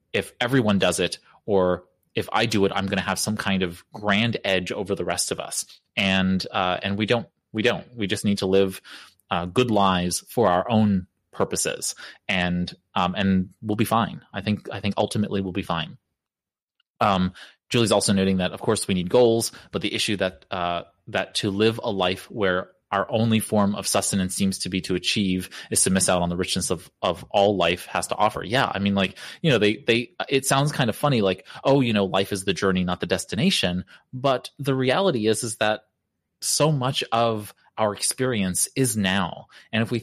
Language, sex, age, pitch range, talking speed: English, male, 20-39, 95-115 Hz, 210 wpm